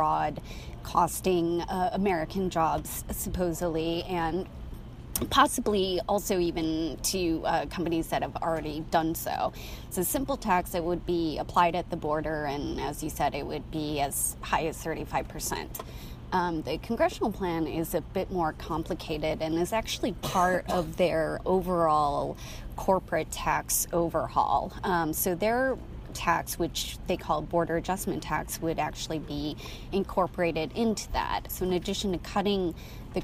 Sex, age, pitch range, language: female, 20-39, 155-180 Hz, English